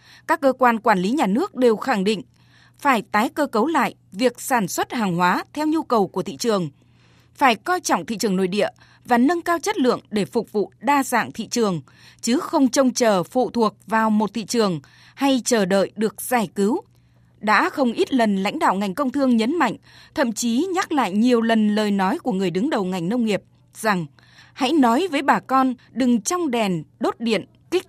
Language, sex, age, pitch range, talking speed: Vietnamese, female, 20-39, 215-280 Hz, 215 wpm